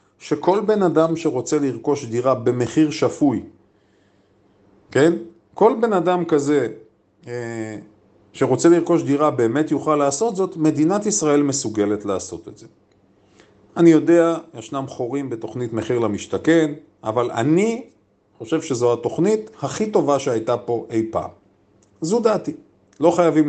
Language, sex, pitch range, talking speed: Hebrew, male, 105-160 Hz, 125 wpm